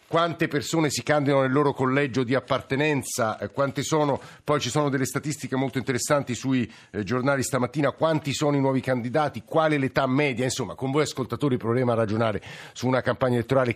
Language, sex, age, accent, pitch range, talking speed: Italian, male, 50-69, native, 120-140 Hz, 180 wpm